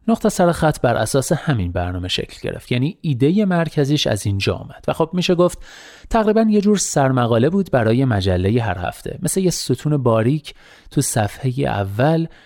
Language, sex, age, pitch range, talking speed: Persian, male, 30-49, 110-160 Hz, 170 wpm